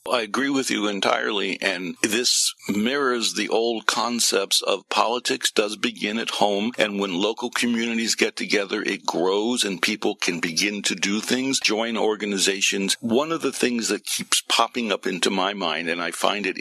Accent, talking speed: American, 180 wpm